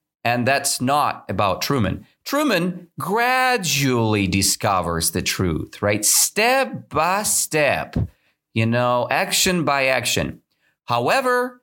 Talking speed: 105 wpm